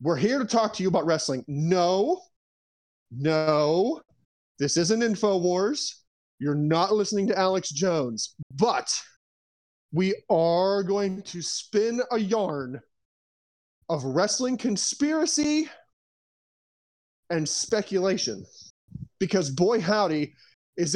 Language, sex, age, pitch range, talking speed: English, male, 30-49, 150-215 Hz, 105 wpm